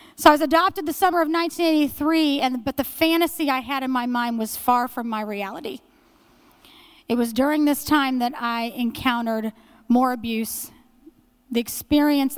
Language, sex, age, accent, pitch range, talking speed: English, female, 30-49, American, 220-265 Hz, 165 wpm